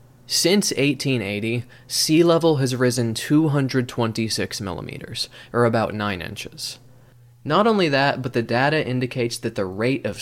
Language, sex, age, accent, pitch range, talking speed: English, male, 20-39, American, 115-130 Hz, 135 wpm